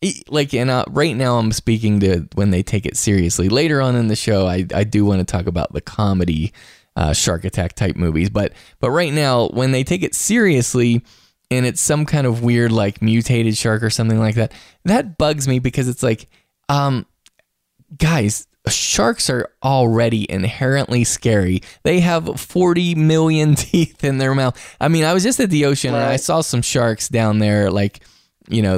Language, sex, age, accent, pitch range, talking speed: English, male, 10-29, American, 105-135 Hz, 195 wpm